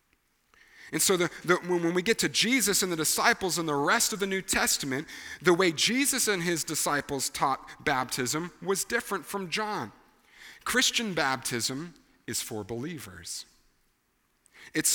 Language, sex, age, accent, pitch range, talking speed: English, male, 40-59, American, 150-190 Hz, 140 wpm